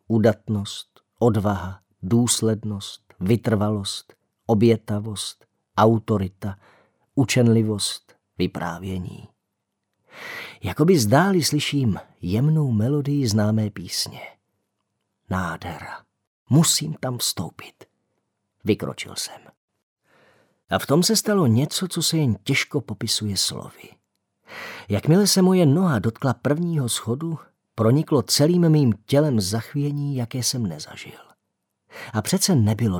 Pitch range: 105-155 Hz